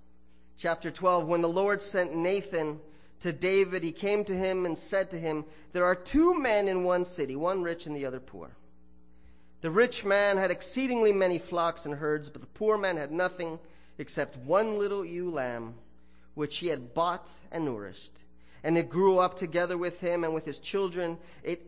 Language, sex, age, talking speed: English, male, 30-49, 190 wpm